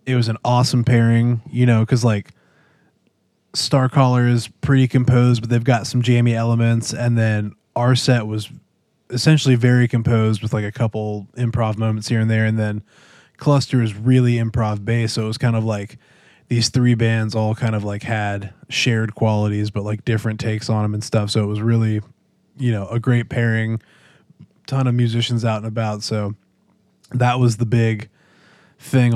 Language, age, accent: English, 20-39, American